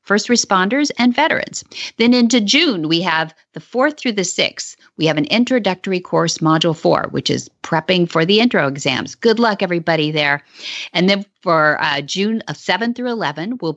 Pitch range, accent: 150-210 Hz, American